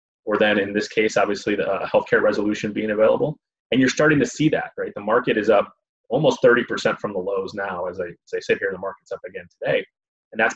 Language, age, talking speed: English, 30-49, 235 wpm